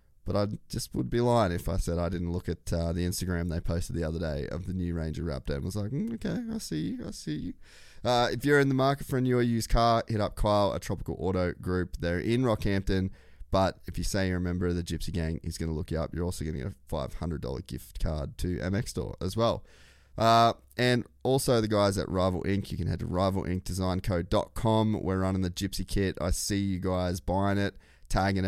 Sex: male